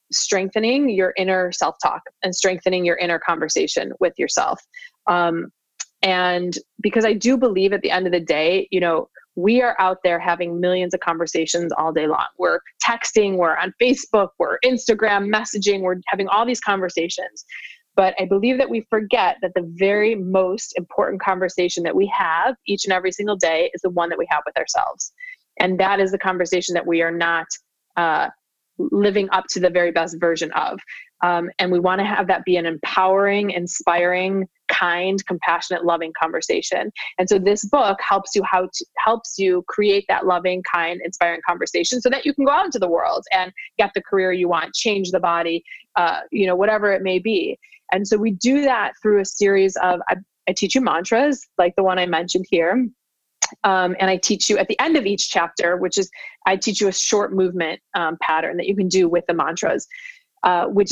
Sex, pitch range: female, 180-210 Hz